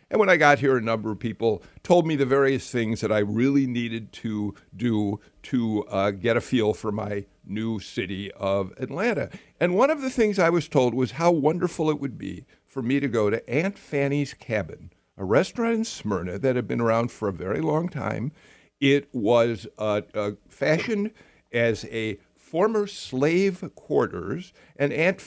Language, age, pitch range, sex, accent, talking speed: English, 50-69, 110-155 Hz, male, American, 180 wpm